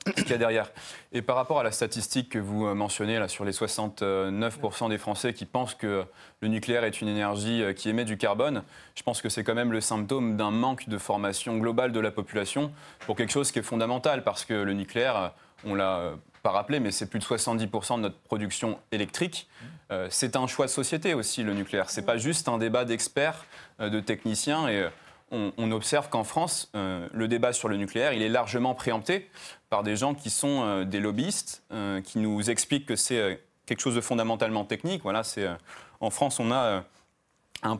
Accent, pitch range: French, 105-125 Hz